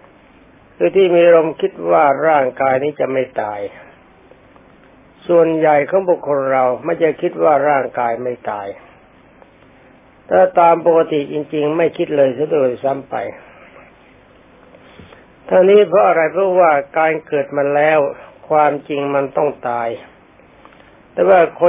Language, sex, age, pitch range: Thai, male, 60-79, 130-165 Hz